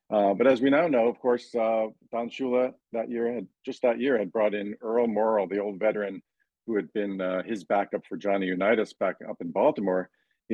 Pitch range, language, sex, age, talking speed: 100-115 Hz, English, male, 50-69, 220 wpm